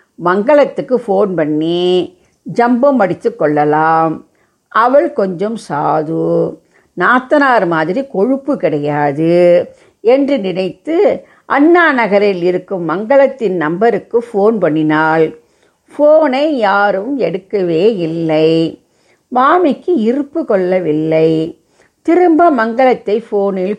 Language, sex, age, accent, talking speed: English, female, 50-69, Indian, 80 wpm